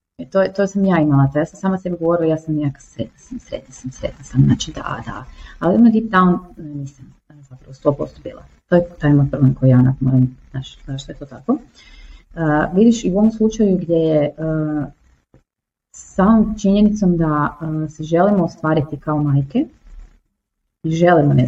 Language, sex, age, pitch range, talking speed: Croatian, female, 30-49, 145-175 Hz, 185 wpm